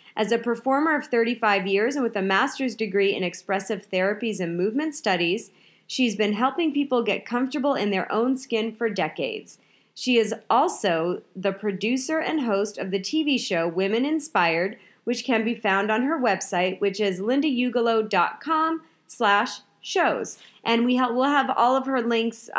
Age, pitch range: 30-49, 195-255 Hz